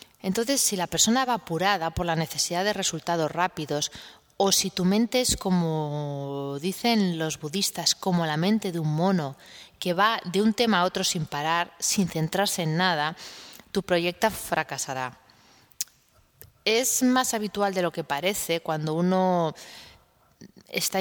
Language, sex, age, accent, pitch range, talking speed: Spanish, female, 20-39, Spanish, 160-205 Hz, 150 wpm